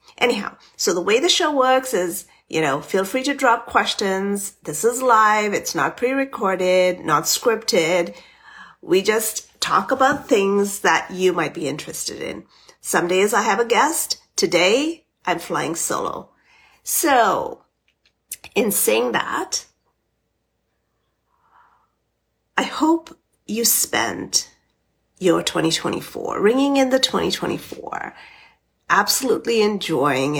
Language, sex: English, female